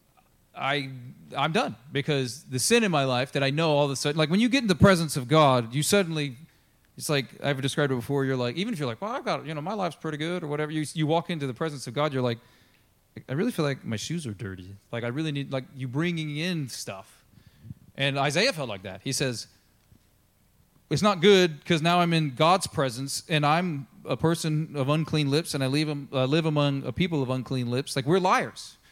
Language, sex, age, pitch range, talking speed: English, male, 30-49, 130-160 Hz, 240 wpm